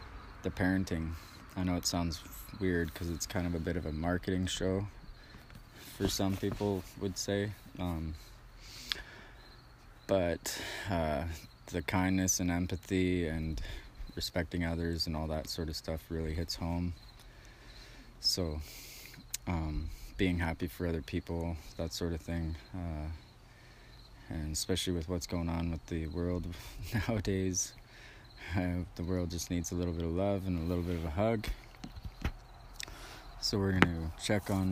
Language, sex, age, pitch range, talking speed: English, male, 20-39, 85-100 Hz, 145 wpm